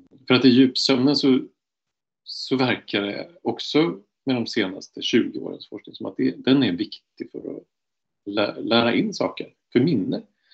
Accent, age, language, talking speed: Norwegian, 40-59, Swedish, 160 wpm